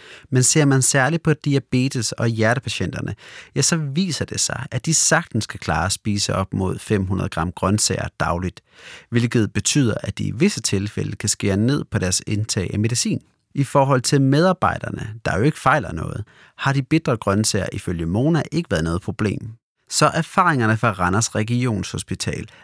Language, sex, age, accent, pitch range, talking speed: Danish, male, 30-49, native, 105-140 Hz, 170 wpm